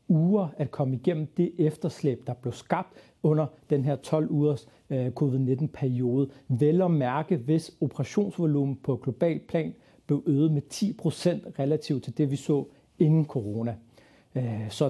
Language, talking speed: Danish, 150 wpm